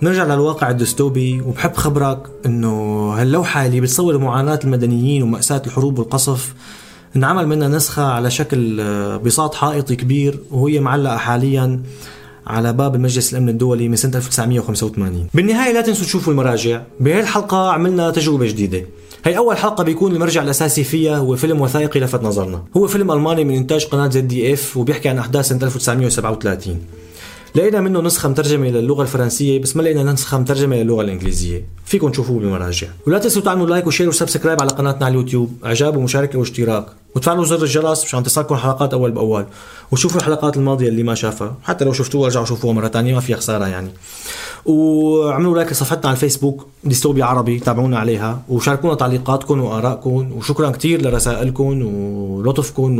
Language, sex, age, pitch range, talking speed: Arabic, male, 20-39, 120-150 Hz, 155 wpm